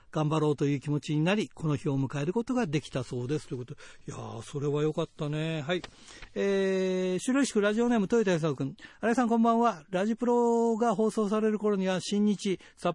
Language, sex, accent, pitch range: Japanese, male, native, 155-200 Hz